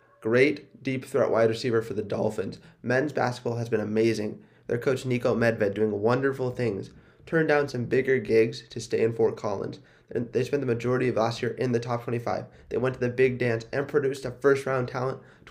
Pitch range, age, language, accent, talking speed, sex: 115-145 Hz, 20-39, English, American, 200 wpm, male